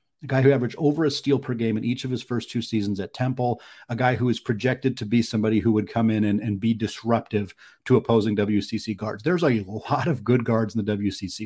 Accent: American